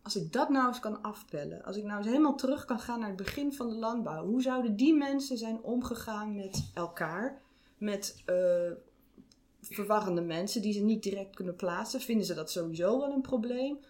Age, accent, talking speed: 20-39, Dutch, 200 wpm